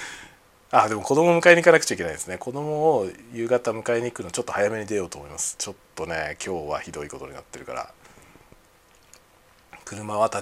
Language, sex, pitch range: Japanese, male, 95-135 Hz